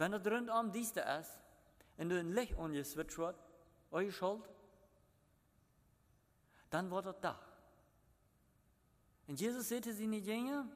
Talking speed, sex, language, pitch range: 110 wpm, male, German, 155-210 Hz